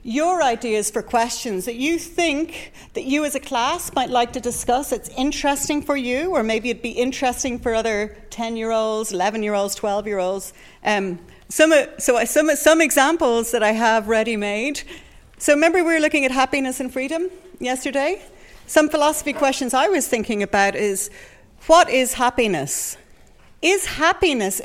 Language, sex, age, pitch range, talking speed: English, female, 40-59, 205-290 Hz, 155 wpm